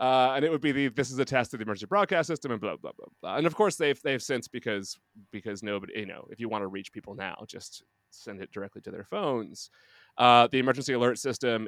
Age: 30-49